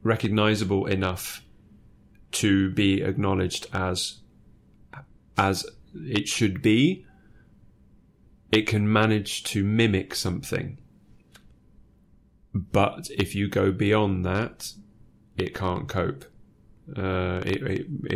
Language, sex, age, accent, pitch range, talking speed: English, male, 20-39, British, 95-115 Hz, 85 wpm